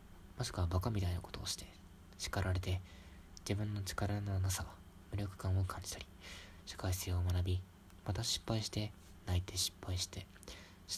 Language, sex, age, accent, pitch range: Japanese, male, 20-39, native, 90-100 Hz